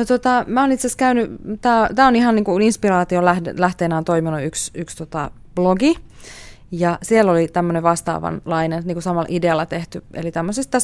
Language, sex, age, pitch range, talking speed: Finnish, female, 20-39, 165-230 Hz, 165 wpm